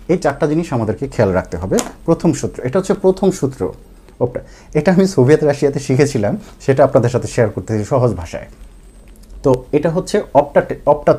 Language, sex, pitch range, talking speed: Bengali, male, 120-155 Hz, 135 wpm